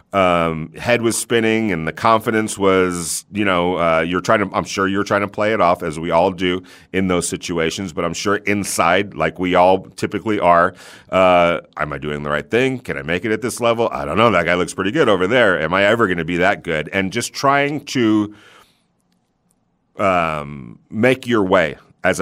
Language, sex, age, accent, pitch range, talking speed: English, male, 40-59, American, 85-115 Hz, 215 wpm